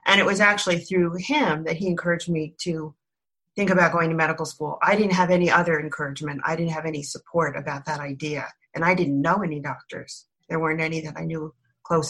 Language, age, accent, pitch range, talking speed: English, 40-59, American, 155-180 Hz, 220 wpm